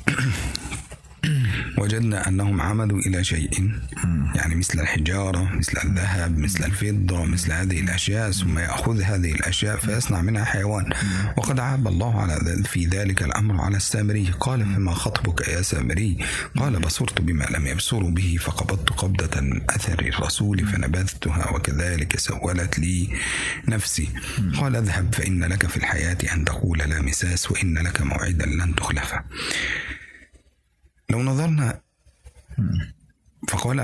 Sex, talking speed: male, 120 wpm